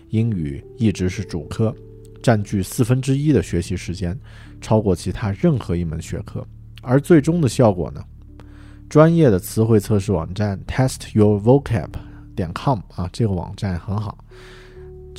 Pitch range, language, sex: 90-125 Hz, Chinese, male